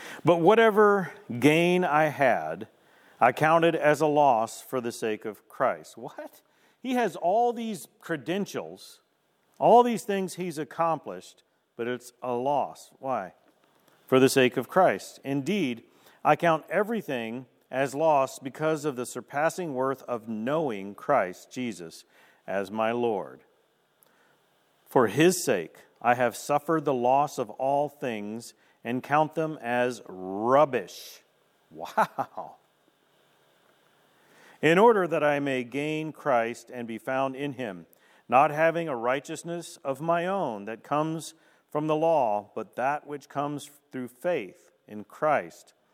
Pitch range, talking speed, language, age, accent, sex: 120-160 Hz, 135 wpm, English, 40-59, American, male